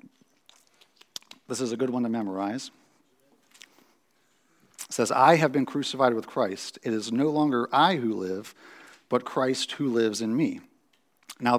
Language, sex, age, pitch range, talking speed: English, male, 40-59, 110-135 Hz, 150 wpm